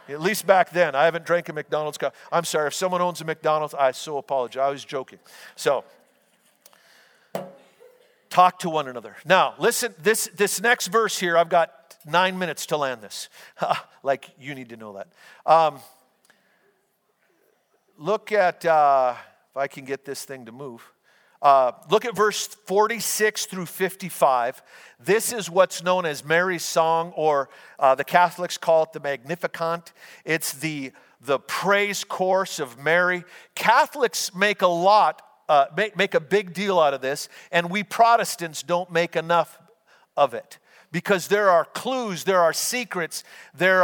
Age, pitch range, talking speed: 50-69, 160-215 Hz, 160 wpm